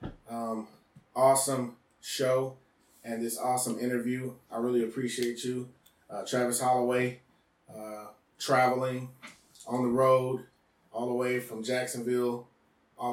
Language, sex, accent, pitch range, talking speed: English, male, American, 115-130 Hz, 115 wpm